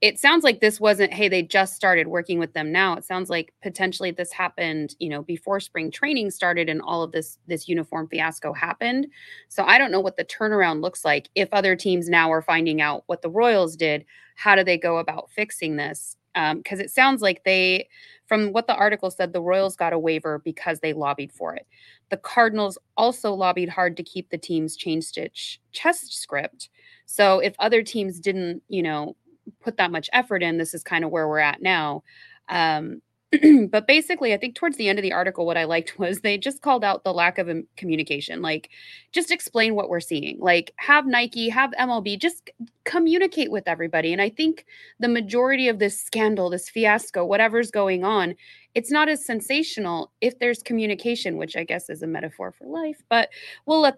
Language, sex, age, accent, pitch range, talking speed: English, female, 30-49, American, 170-235 Hz, 205 wpm